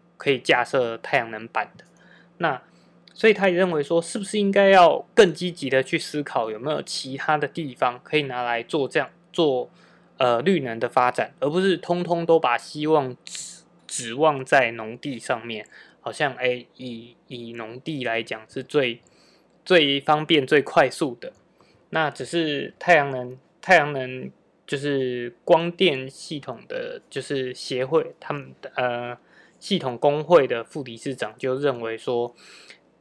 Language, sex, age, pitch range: Chinese, male, 20-39, 125-165 Hz